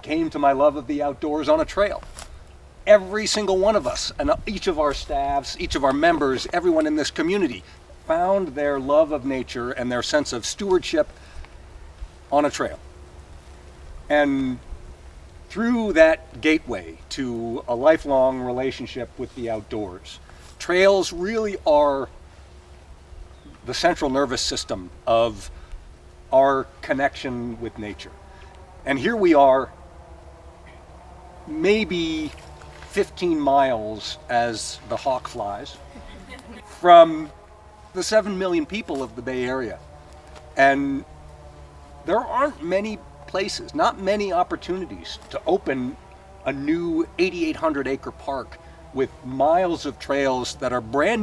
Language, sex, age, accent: English, male, 50-69, American